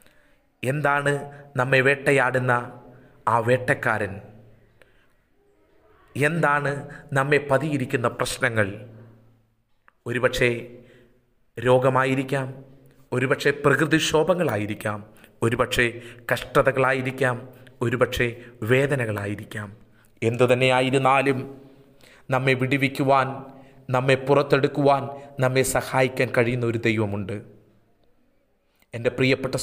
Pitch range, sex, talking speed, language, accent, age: 115-135 Hz, male, 60 wpm, Malayalam, native, 30-49